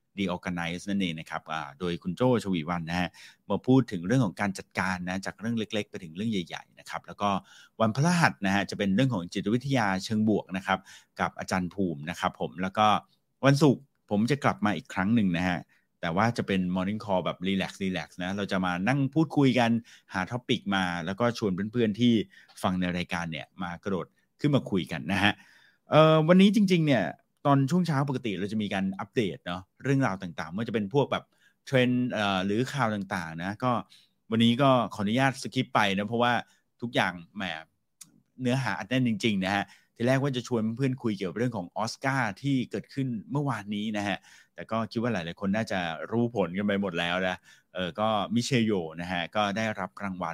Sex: male